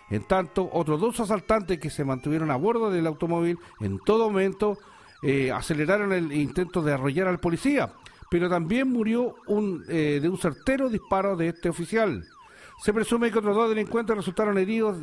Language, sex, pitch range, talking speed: Spanish, male, 155-210 Hz, 170 wpm